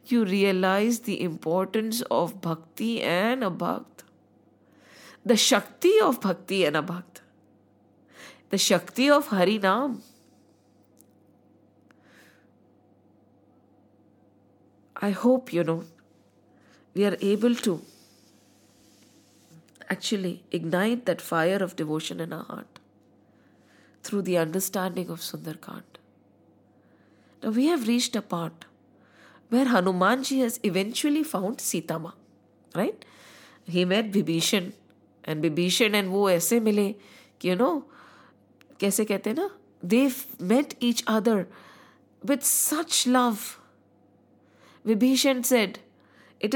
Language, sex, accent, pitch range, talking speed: English, female, Indian, 175-255 Hz, 100 wpm